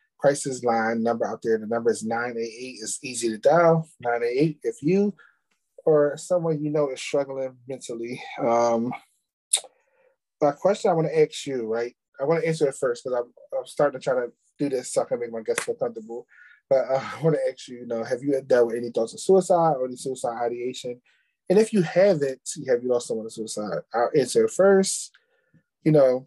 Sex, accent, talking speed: male, American, 210 wpm